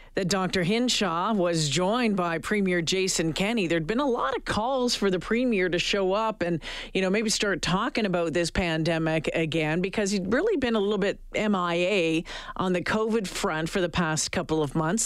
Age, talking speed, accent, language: 50-69, 195 wpm, American, English